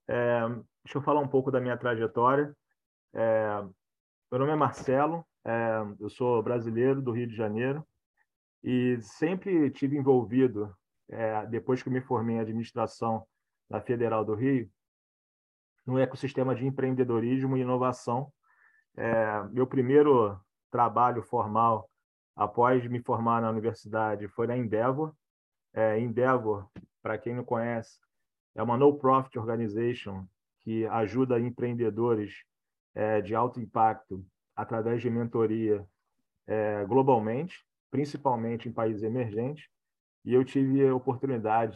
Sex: male